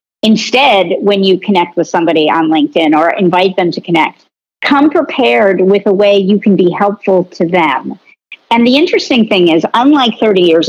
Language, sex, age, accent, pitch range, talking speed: English, female, 50-69, American, 180-230 Hz, 180 wpm